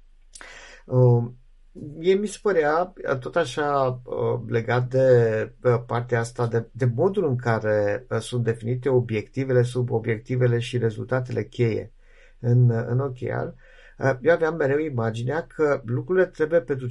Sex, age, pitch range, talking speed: male, 50-69, 120-155 Hz, 140 wpm